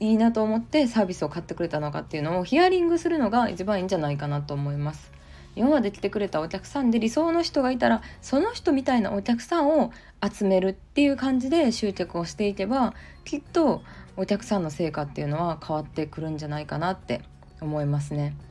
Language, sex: Japanese, female